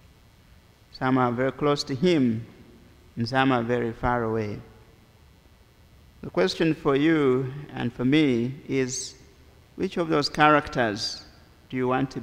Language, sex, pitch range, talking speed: English, male, 115-145 Hz, 135 wpm